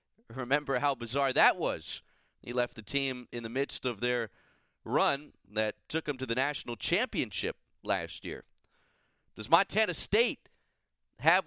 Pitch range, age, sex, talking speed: 125-165 Hz, 30-49, male, 145 wpm